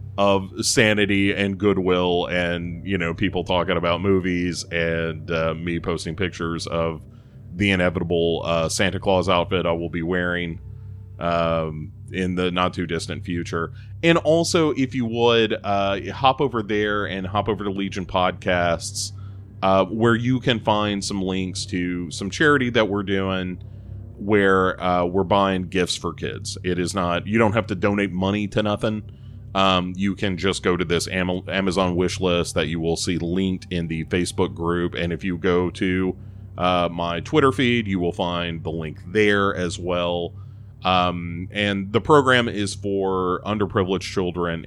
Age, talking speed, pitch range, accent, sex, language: 30-49, 165 wpm, 90-105 Hz, American, male, English